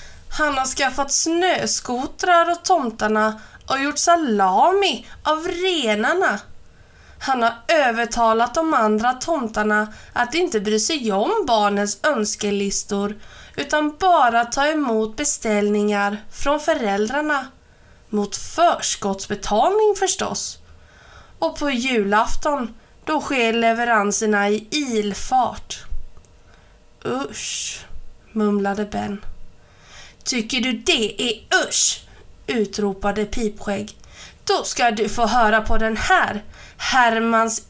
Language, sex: Swedish, female